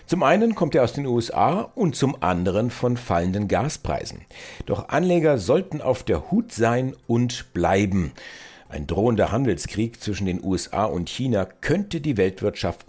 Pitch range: 90-125 Hz